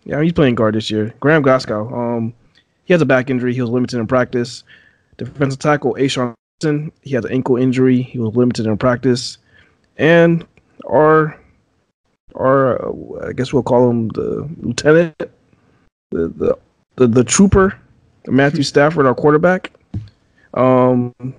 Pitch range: 120-150 Hz